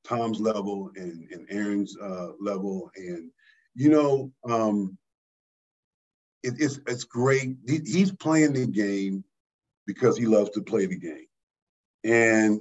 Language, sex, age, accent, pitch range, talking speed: English, male, 50-69, American, 110-140 Hz, 135 wpm